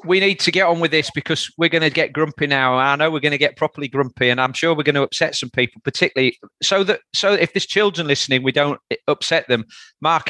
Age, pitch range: 40-59, 130-160 Hz